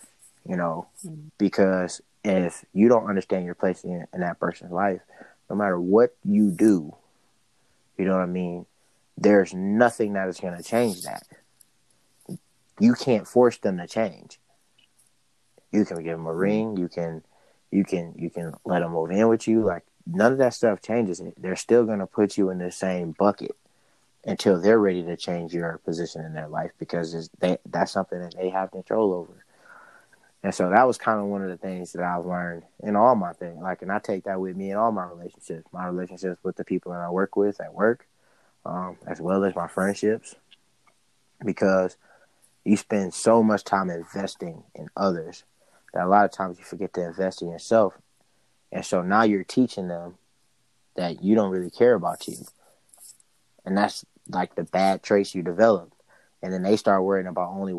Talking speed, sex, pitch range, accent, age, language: 195 wpm, male, 90-105 Hz, American, 20-39, English